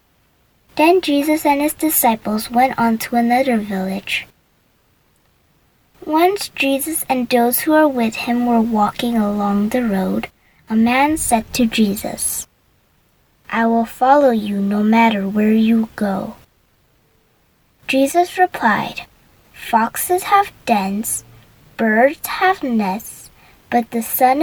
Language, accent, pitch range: Korean, American, 215-275 Hz